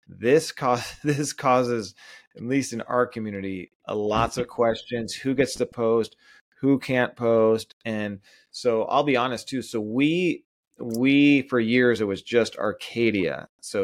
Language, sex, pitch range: English, male, 110-135 Hz